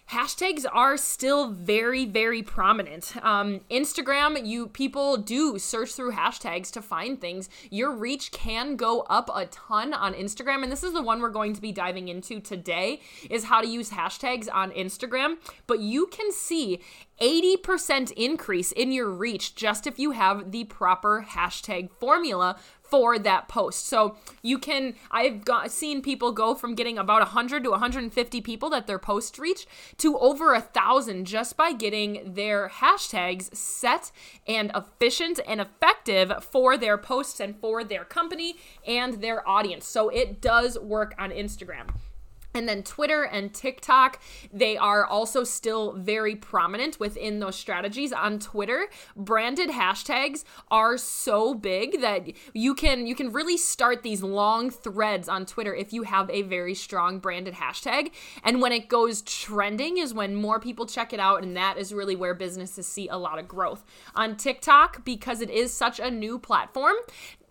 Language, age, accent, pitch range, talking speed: English, 20-39, American, 205-265 Hz, 165 wpm